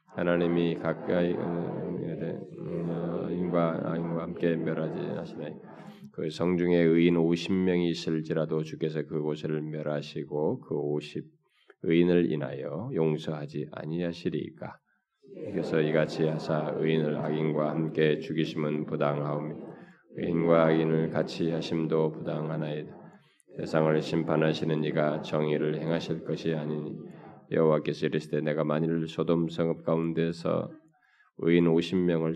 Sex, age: male, 20-39